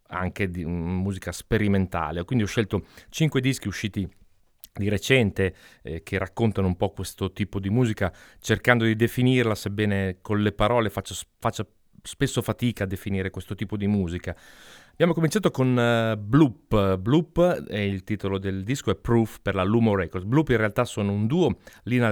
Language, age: Italian, 30-49